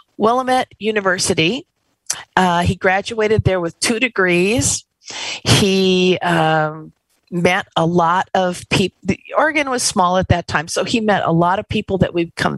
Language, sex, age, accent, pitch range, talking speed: English, female, 50-69, American, 165-195 Hz, 155 wpm